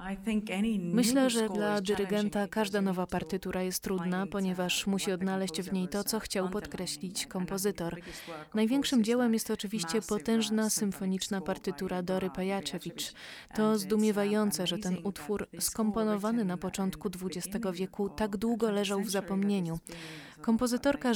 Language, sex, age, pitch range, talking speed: Polish, female, 20-39, 185-215 Hz, 125 wpm